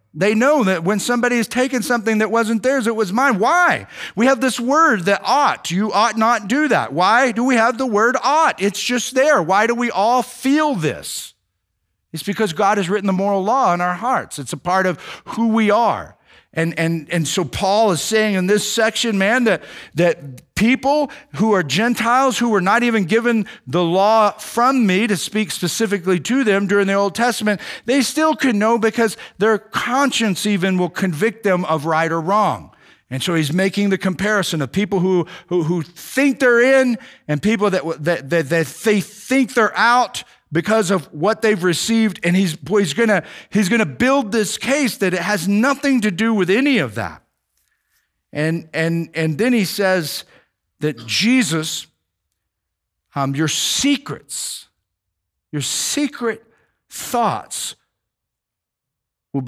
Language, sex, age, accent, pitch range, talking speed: English, male, 50-69, American, 155-230 Hz, 175 wpm